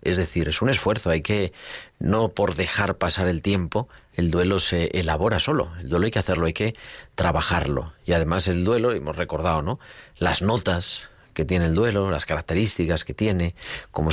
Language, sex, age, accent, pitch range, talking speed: Spanish, male, 40-59, Spanish, 85-110 Hz, 185 wpm